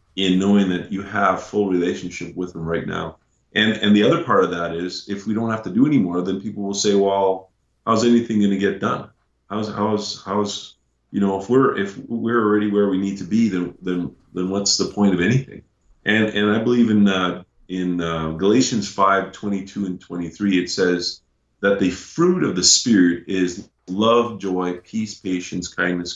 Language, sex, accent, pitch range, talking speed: English, male, American, 90-105 Hz, 195 wpm